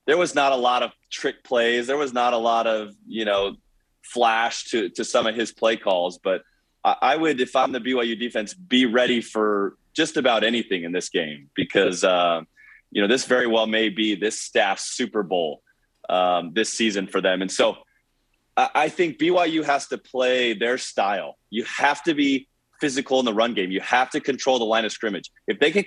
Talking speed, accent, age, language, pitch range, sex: 210 wpm, American, 30-49, English, 100-130 Hz, male